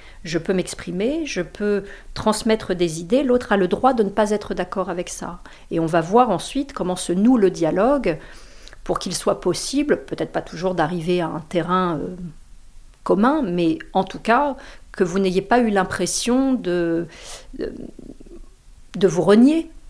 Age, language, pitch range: 40-59, French, 180-240 Hz